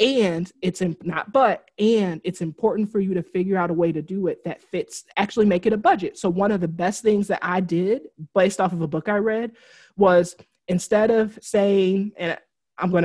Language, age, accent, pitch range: English, 20-39, American, 175-210 Hz